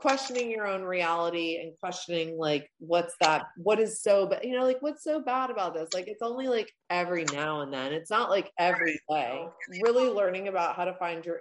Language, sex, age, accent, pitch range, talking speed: English, female, 20-39, American, 160-195 Hz, 220 wpm